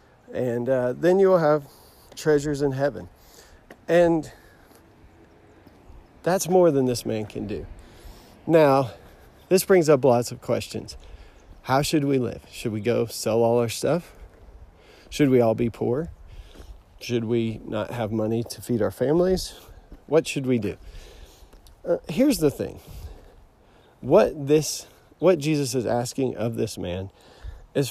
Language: English